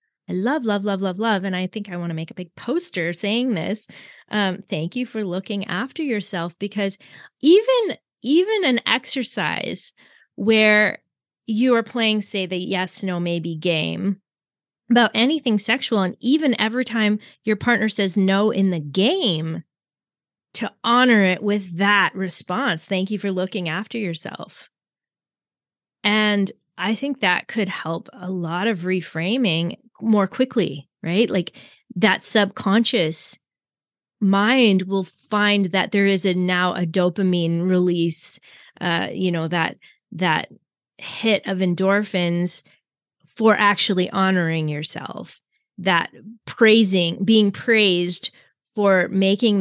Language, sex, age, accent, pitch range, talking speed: English, female, 20-39, American, 180-220 Hz, 135 wpm